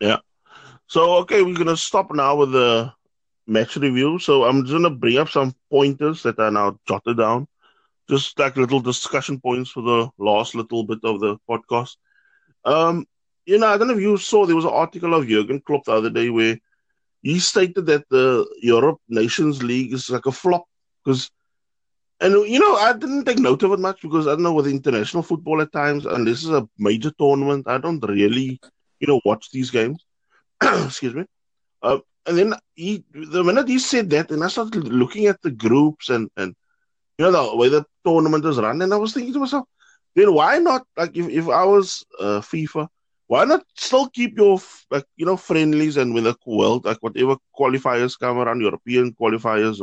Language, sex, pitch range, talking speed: English, male, 125-195 Hz, 205 wpm